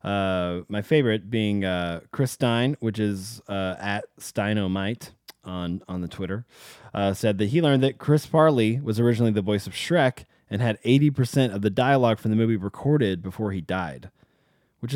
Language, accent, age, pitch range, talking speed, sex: English, American, 20-39, 95-125 Hz, 180 wpm, male